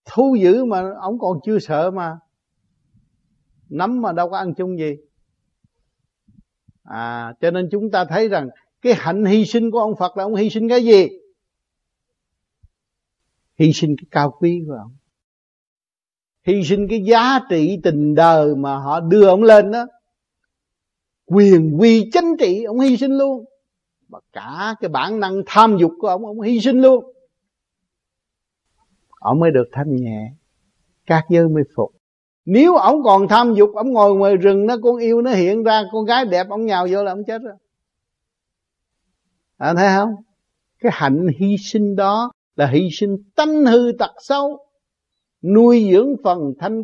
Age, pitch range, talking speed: 60-79, 165-230 Hz, 165 wpm